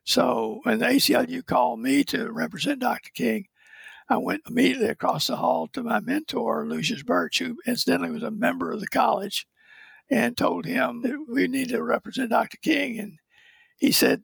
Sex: male